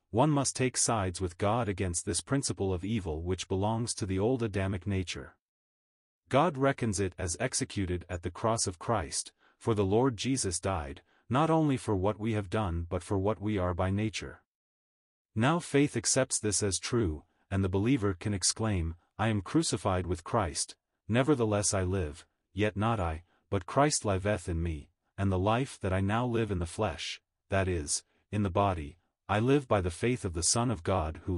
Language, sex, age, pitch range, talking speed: English, male, 30-49, 90-115 Hz, 190 wpm